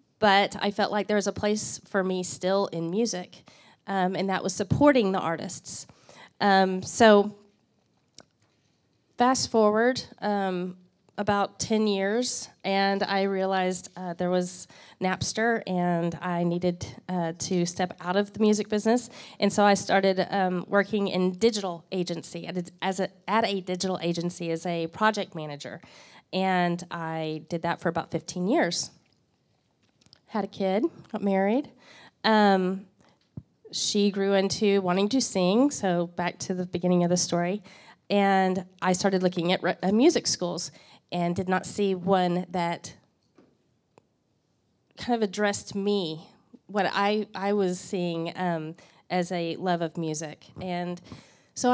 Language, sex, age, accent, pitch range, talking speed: English, female, 30-49, American, 175-205 Hz, 145 wpm